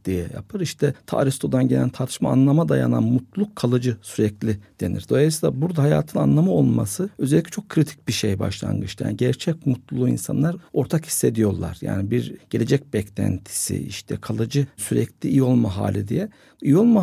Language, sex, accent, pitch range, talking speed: Turkish, male, native, 110-165 Hz, 150 wpm